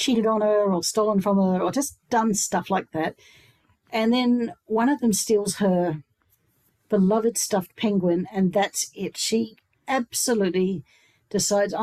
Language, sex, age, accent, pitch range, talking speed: English, female, 50-69, Australian, 185-225 Hz, 145 wpm